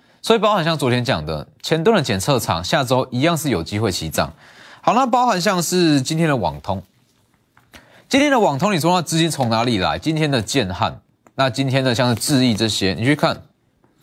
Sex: male